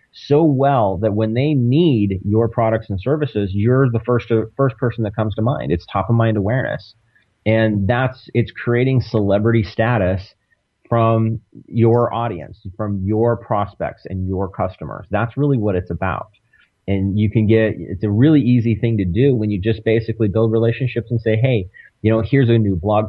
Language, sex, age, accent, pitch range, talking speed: English, male, 30-49, American, 100-125 Hz, 185 wpm